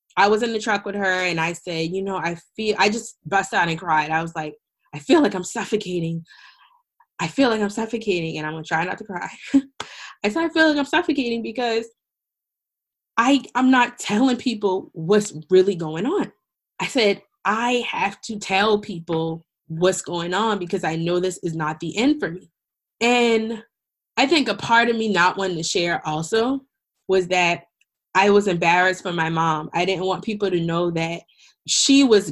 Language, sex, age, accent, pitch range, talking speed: English, female, 20-39, American, 175-225 Hz, 195 wpm